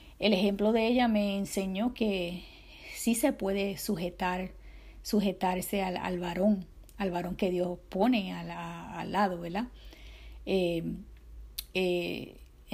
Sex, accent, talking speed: female, American, 120 wpm